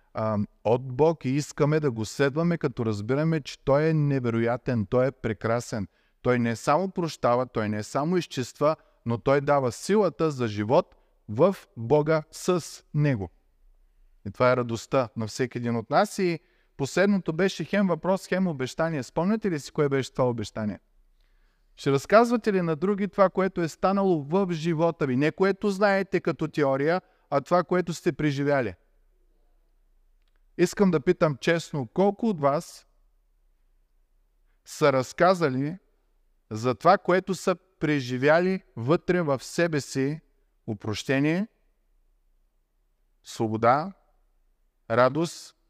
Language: Bulgarian